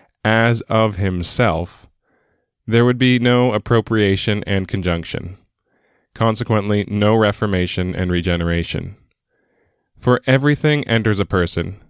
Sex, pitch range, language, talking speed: male, 95-115 Hz, English, 100 wpm